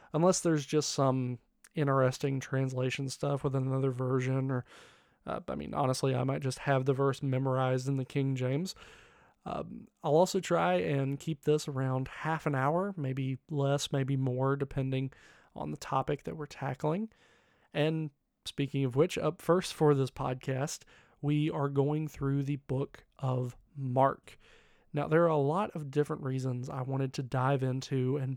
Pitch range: 130-150 Hz